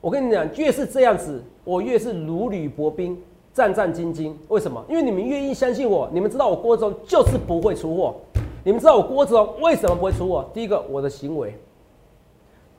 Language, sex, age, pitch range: Chinese, male, 40-59, 140-205 Hz